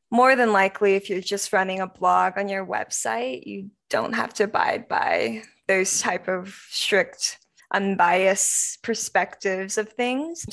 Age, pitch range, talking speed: 20-39, 185-220 Hz, 150 wpm